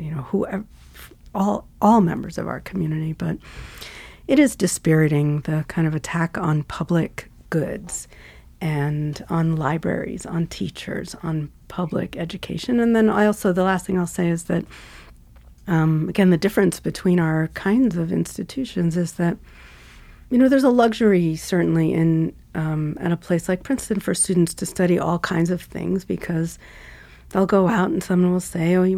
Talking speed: 170 wpm